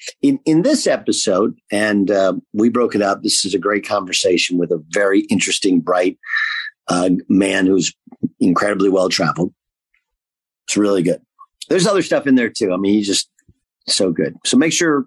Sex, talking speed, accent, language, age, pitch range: male, 170 wpm, American, English, 50-69, 105-170 Hz